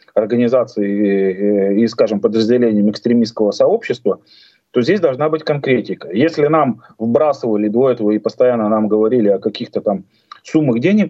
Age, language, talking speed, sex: 30-49, Russian, 145 wpm, male